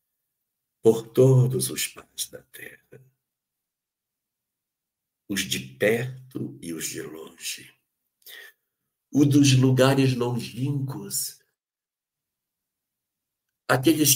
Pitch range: 95-145 Hz